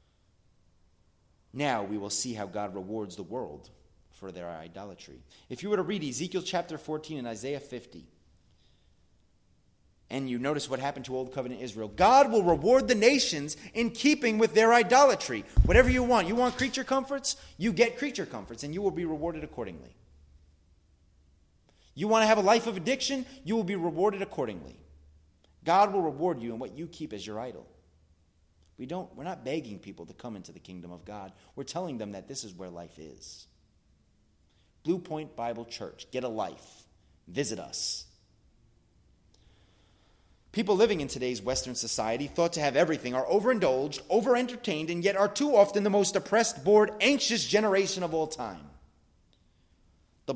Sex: male